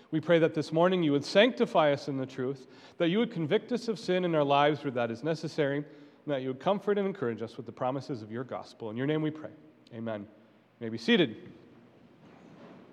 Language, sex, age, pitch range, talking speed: English, male, 40-59, 165-225 Hz, 230 wpm